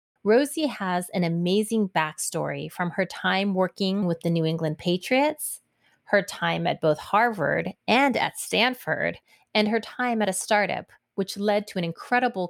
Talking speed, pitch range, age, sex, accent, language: 160 wpm, 170-220 Hz, 30-49, female, American, English